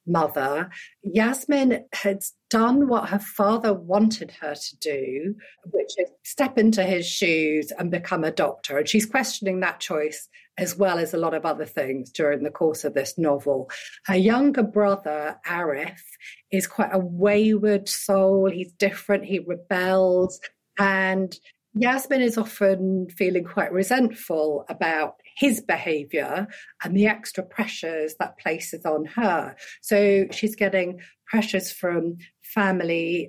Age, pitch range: 40-59, 175-215 Hz